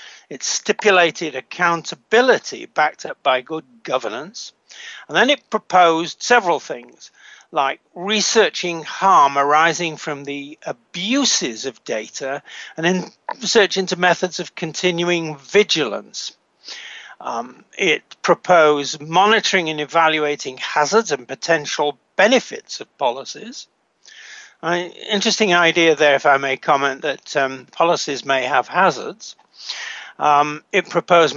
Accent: British